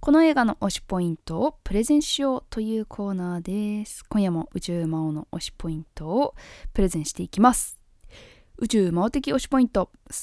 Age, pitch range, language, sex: 20-39, 175-240 Hz, Japanese, female